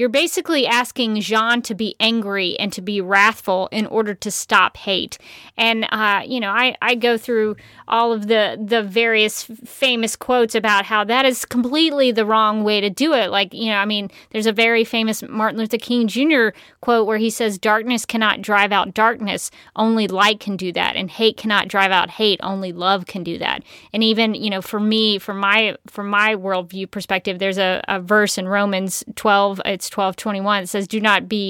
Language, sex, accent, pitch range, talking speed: English, female, American, 205-245 Hz, 200 wpm